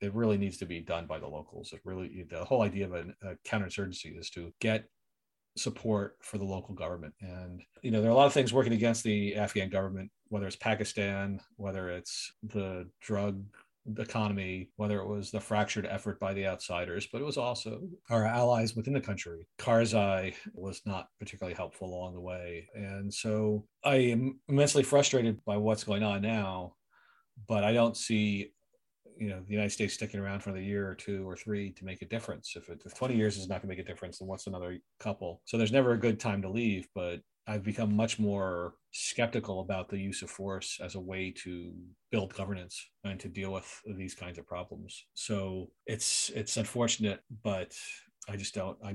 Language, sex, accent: English, male, American